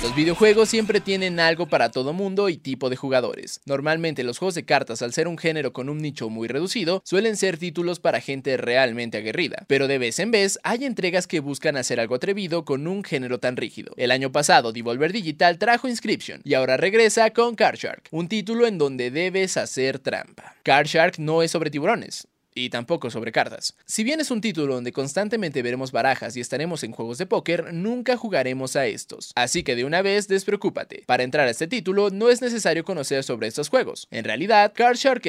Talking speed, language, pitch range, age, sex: 200 wpm, Spanish, 130-195 Hz, 20-39, male